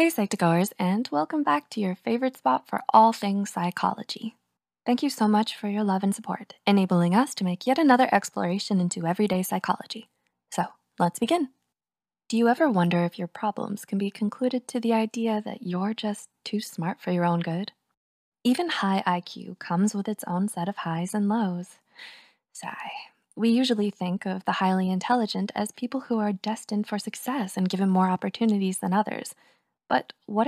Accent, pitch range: American, 185-230 Hz